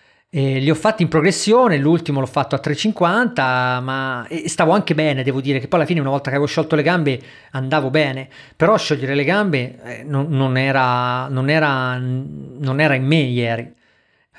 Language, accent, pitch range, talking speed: Italian, native, 125-155 Hz, 190 wpm